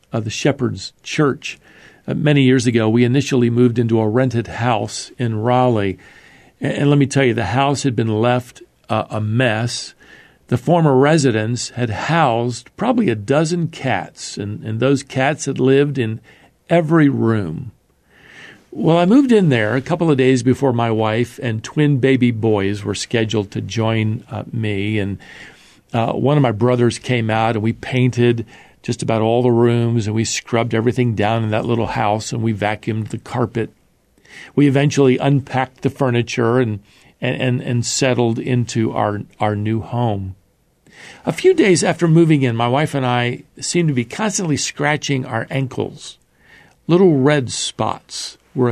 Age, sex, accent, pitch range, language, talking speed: 50-69, male, American, 115-140 Hz, English, 165 wpm